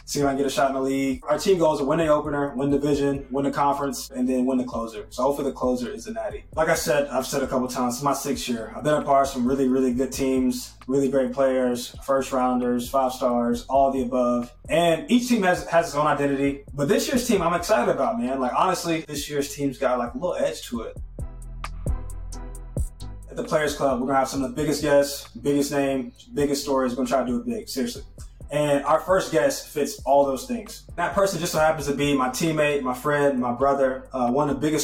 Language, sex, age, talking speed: English, male, 20-39, 250 wpm